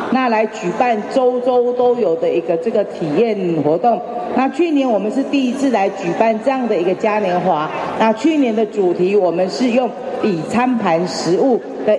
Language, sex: Chinese, female